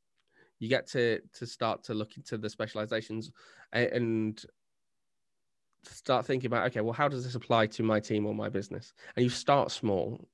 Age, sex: 20-39, male